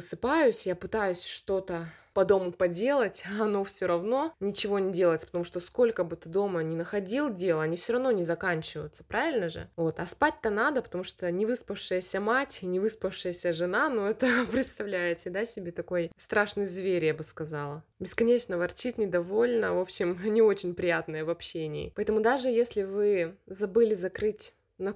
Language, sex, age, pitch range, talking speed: Russian, female, 20-39, 175-215 Hz, 170 wpm